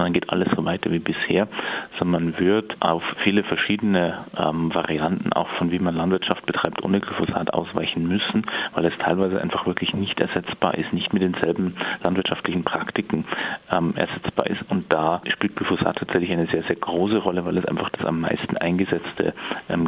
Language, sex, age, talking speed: German, male, 30-49, 175 wpm